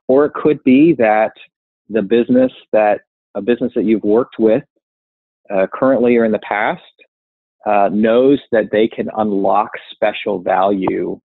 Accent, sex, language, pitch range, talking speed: American, male, English, 100-125 Hz, 150 wpm